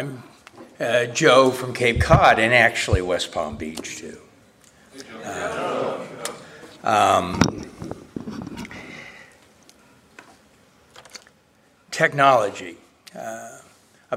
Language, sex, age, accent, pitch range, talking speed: English, male, 60-79, American, 115-135 Hz, 60 wpm